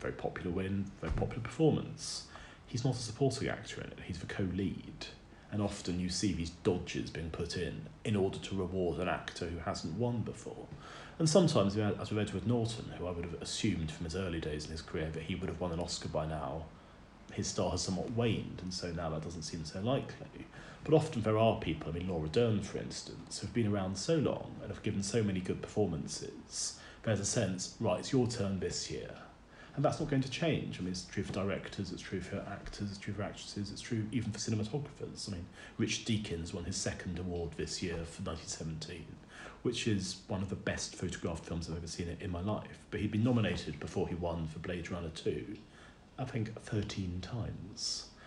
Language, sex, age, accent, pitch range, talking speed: English, male, 30-49, British, 90-115 Hz, 220 wpm